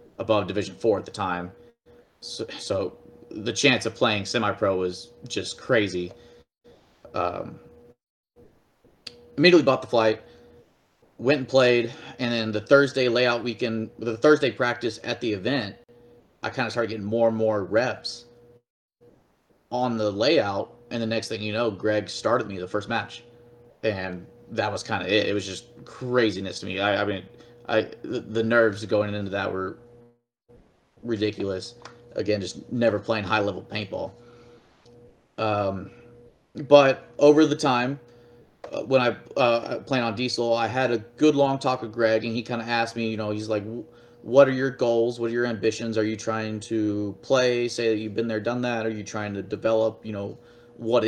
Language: English